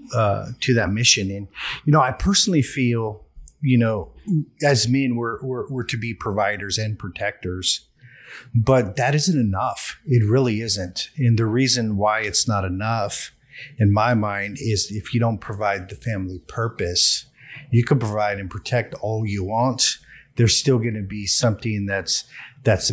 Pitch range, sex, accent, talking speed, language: 100-130 Hz, male, American, 165 wpm, English